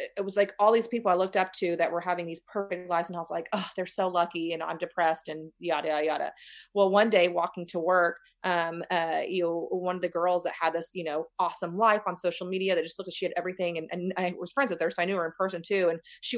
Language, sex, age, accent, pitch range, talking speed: English, female, 30-49, American, 175-215 Hz, 280 wpm